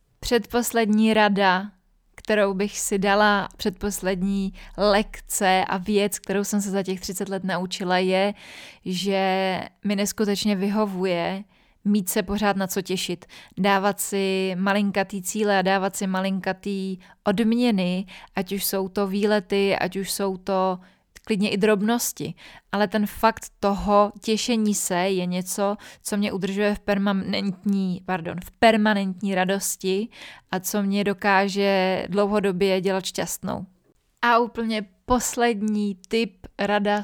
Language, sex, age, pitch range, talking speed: Czech, female, 20-39, 190-210 Hz, 130 wpm